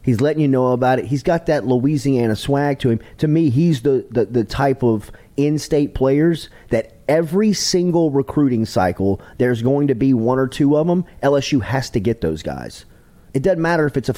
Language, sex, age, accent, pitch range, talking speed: English, male, 30-49, American, 120-150 Hz, 205 wpm